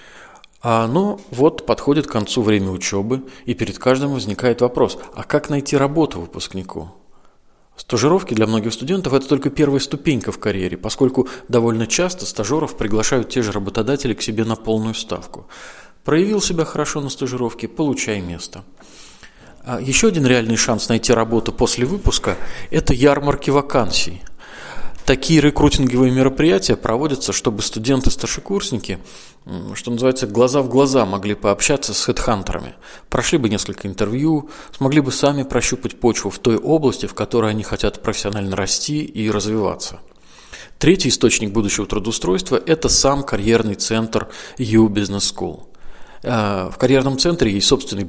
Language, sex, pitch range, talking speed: Russian, male, 105-140 Hz, 135 wpm